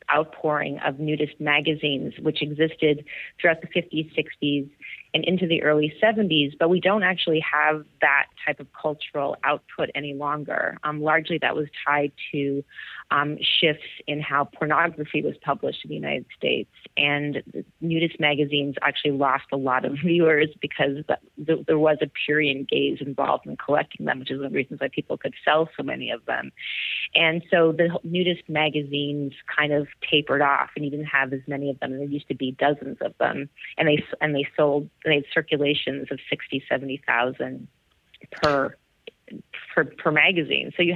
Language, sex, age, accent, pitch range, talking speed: English, female, 30-49, American, 145-160 Hz, 185 wpm